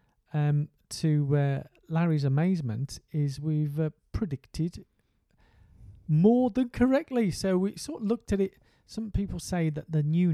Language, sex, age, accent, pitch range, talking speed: English, male, 40-59, British, 135-190 Hz, 145 wpm